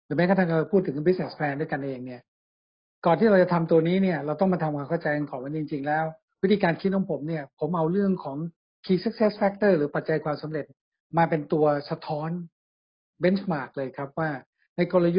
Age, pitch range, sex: 60-79, 150-185 Hz, male